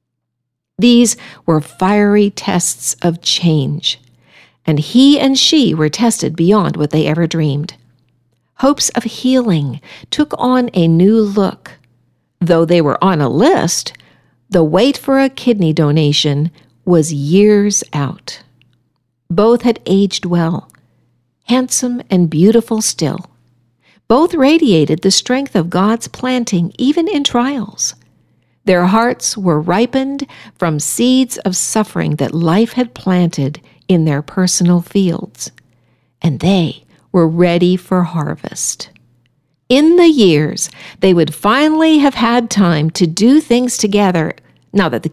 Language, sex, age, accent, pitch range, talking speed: English, female, 60-79, American, 155-235 Hz, 130 wpm